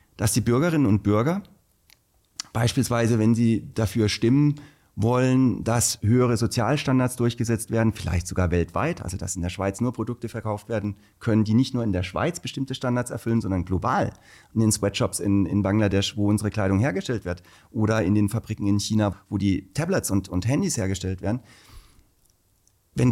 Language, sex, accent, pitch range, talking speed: German, male, German, 100-130 Hz, 170 wpm